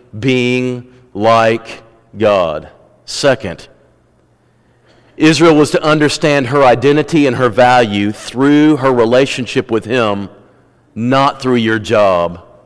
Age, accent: 40-59, American